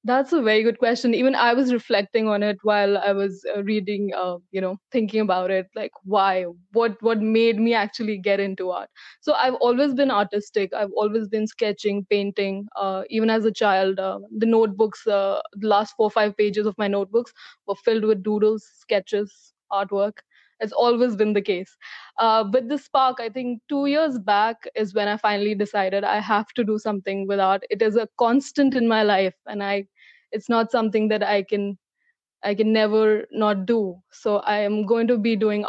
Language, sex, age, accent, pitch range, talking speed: English, female, 20-39, Indian, 200-230 Hz, 200 wpm